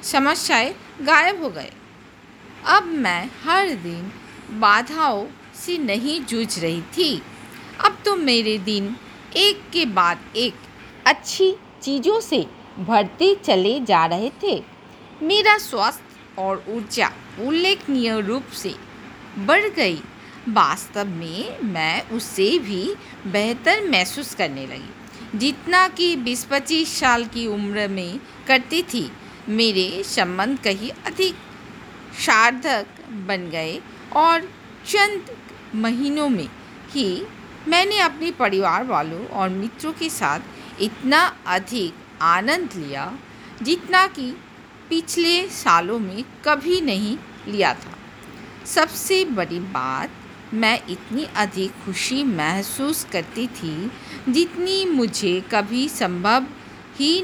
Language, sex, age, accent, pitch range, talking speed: Hindi, female, 50-69, native, 210-325 Hz, 110 wpm